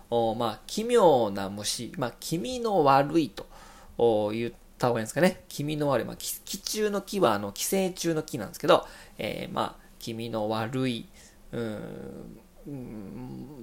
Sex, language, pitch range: male, Japanese, 115-175 Hz